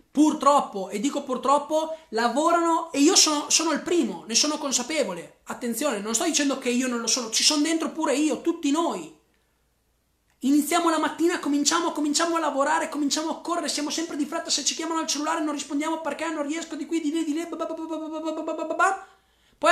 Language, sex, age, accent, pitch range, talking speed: Italian, male, 30-49, native, 230-320 Hz, 185 wpm